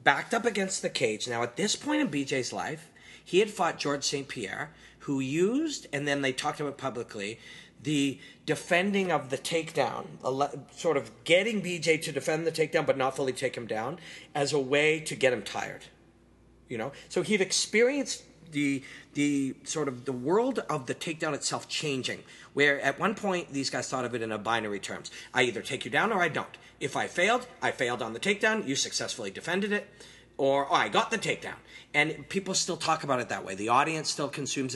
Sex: male